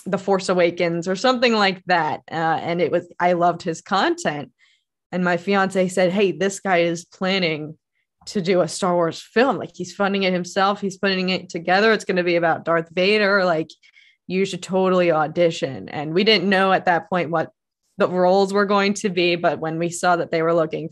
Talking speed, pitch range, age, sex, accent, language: 210 wpm, 175-220 Hz, 20-39, female, American, English